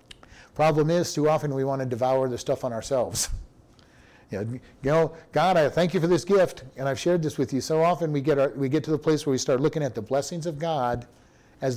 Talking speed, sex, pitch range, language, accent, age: 250 wpm, male, 125-160 Hz, English, American, 50-69